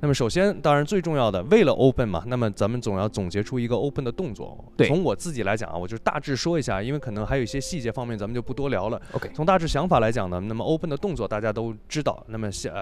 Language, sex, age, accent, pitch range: Chinese, male, 20-39, native, 105-150 Hz